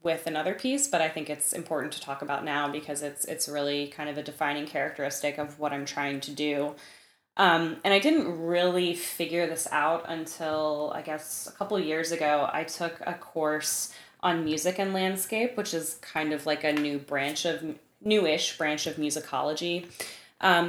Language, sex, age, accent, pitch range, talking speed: English, female, 20-39, American, 150-175 Hz, 185 wpm